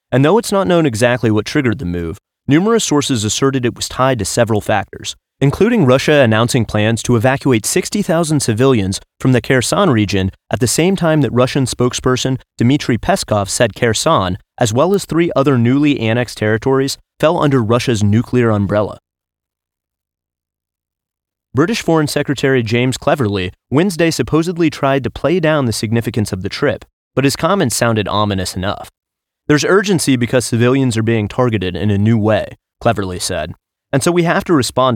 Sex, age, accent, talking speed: male, 30-49, American, 165 wpm